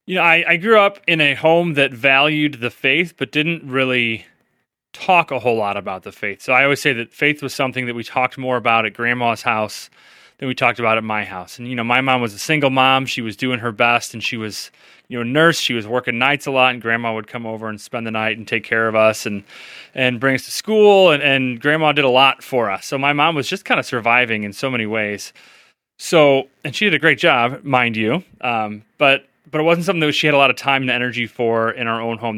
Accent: American